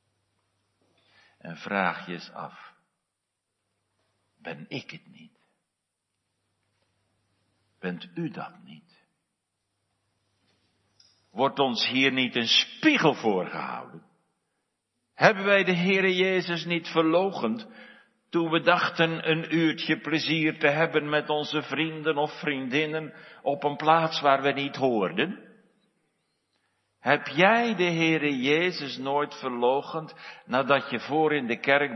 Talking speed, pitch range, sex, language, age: 110 wpm, 100-160 Hz, male, Dutch, 60-79